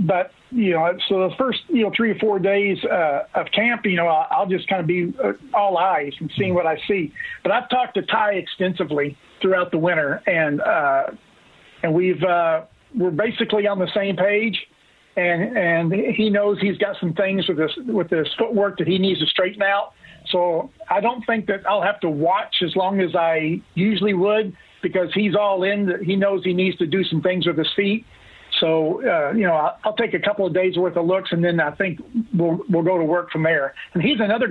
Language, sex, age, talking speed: English, male, 50-69, 220 wpm